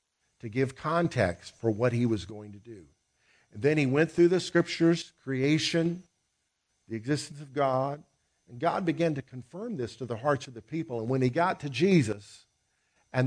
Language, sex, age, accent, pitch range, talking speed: English, male, 50-69, American, 110-170 Hz, 185 wpm